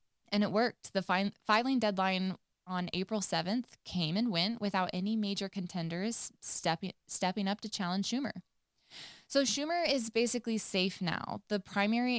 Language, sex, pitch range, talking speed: English, female, 185-230 Hz, 155 wpm